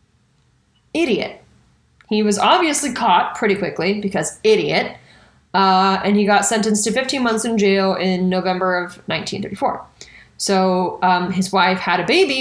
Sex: female